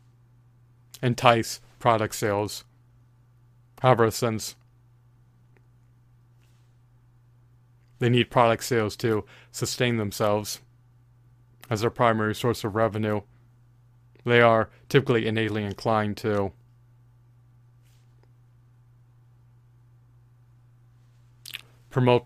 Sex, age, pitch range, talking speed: male, 30-49, 115-120 Hz, 65 wpm